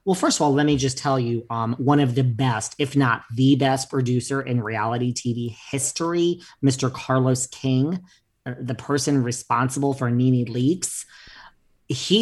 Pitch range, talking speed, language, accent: 120-145 Hz, 160 wpm, English, American